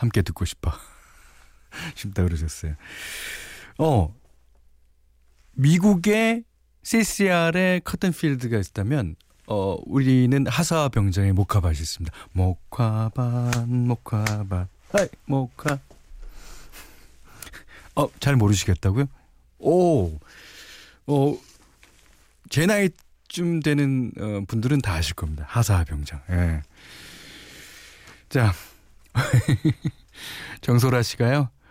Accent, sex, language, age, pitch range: native, male, Korean, 40-59, 90-140 Hz